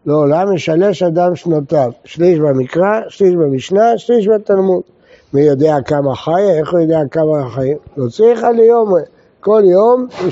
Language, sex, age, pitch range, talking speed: Hebrew, male, 60-79, 135-180 Hz, 155 wpm